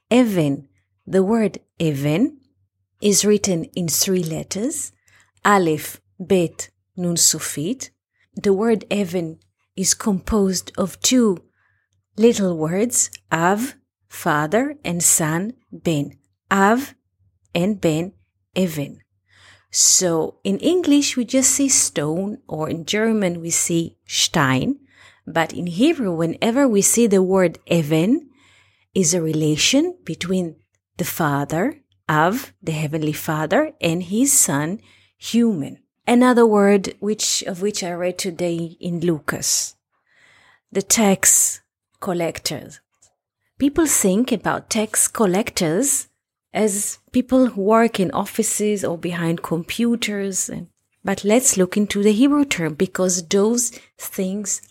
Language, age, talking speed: English, 30-49, 115 wpm